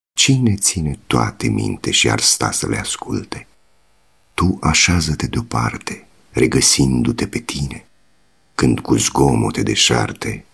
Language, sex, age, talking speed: Romanian, male, 50-69, 115 wpm